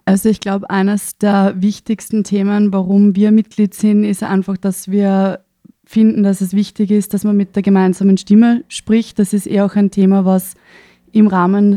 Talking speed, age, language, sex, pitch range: 185 wpm, 20-39, German, female, 185-200 Hz